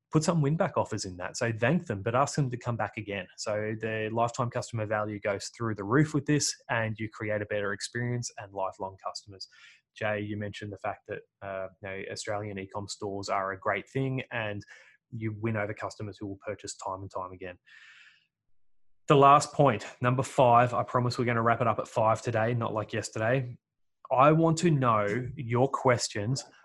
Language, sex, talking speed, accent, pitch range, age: English, male, 195 wpm, Australian, 105-125 Hz, 20-39